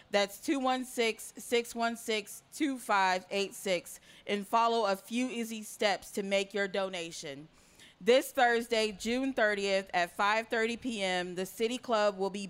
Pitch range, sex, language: 195-235 Hz, female, English